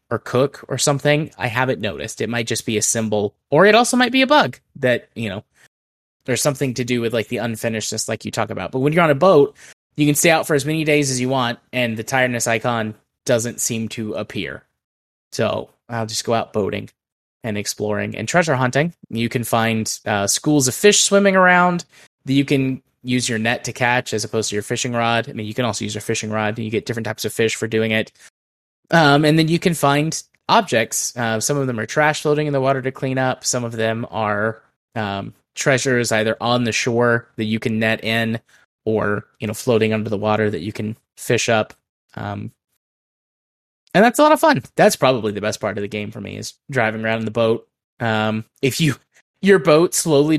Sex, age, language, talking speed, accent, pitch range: male, 20-39, English, 225 wpm, American, 110-140 Hz